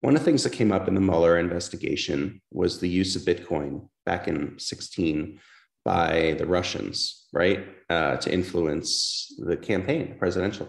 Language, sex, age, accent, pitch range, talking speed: English, male, 30-49, American, 90-115 Hz, 170 wpm